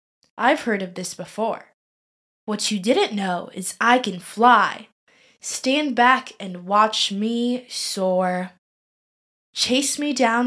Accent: American